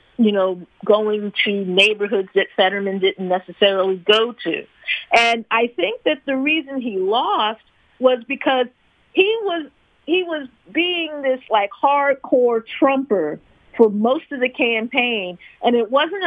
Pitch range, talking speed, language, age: 205-275 Hz, 135 wpm, English, 40-59